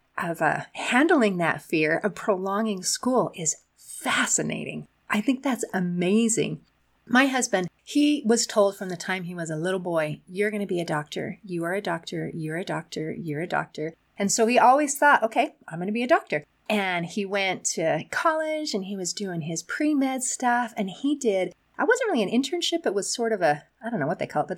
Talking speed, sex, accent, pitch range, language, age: 215 wpm, female, American, 175-255 Hz, English, 30-49